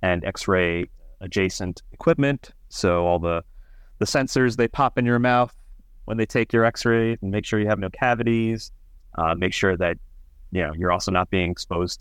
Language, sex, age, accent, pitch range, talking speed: English, male, 30-49, American, 85-110 Hz, 185 wpm